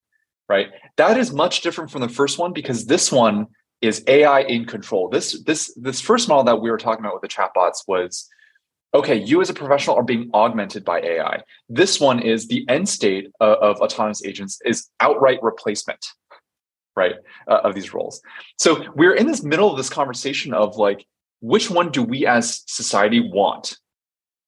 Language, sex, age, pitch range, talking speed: English, male, 20-39, 110-170 Hz, 185 wpm